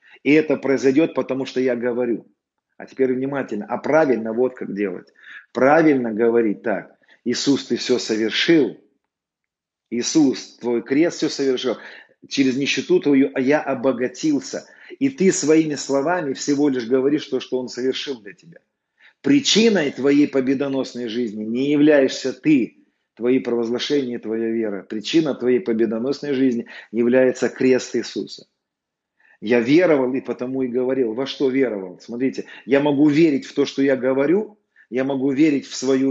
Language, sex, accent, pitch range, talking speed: Russian, male, native, 125-155 Hz, 145 wpm